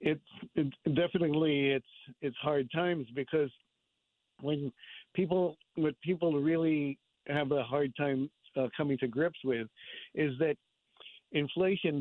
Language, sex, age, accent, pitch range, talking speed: English, male, 50-69, American, 135-160 Hz, 125 wpm